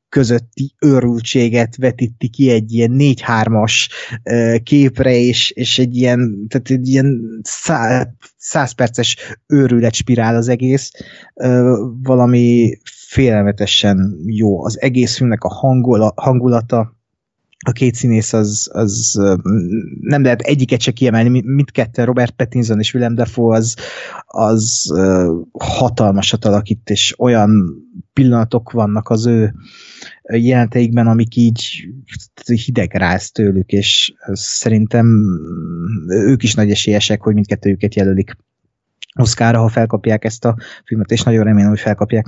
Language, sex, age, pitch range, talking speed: Hungarian, male, 20-39, 105-125 Hz, 120 wpm